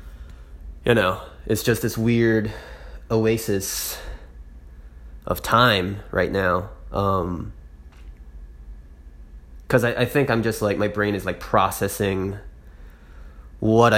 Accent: American